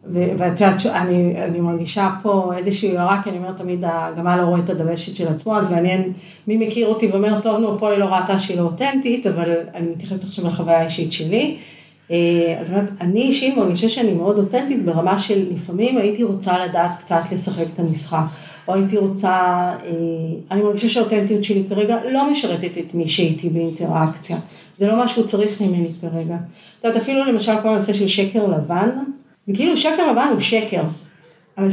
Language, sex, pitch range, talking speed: Hebrew, female, 170-210 Hz, 170 wpm